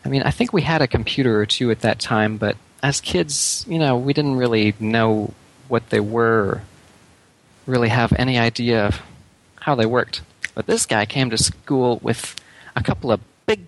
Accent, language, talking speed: American, English, 195 wpm